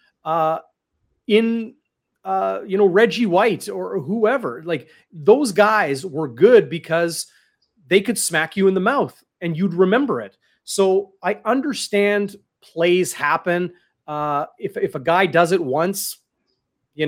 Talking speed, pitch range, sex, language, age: 140 wpm, 140-180 Hz, male, English, 30-49